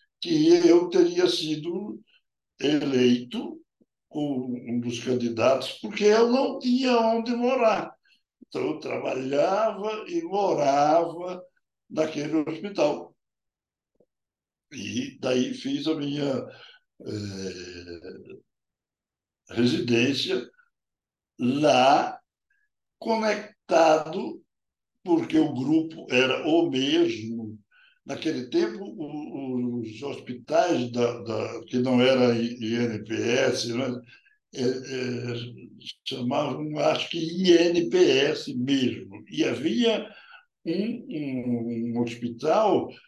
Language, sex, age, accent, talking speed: Portuguese, male, 60-79, Brazilian, 85 wpm